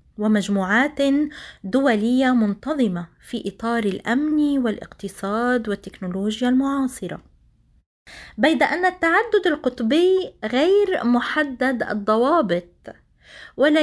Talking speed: 75 wpm